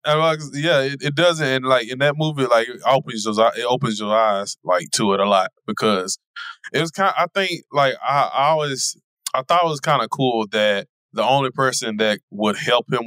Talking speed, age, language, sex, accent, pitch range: 215 wpm, 20-39, English, male, American, 105-140 Hz